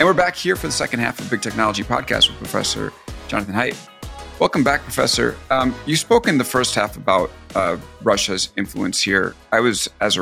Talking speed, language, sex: 205 wpm, English, male